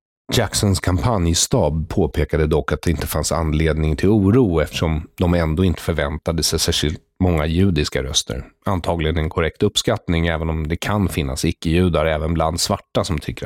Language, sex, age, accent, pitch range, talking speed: English, male, 30-49, Swedish, 85-95 Hz, 160 wpm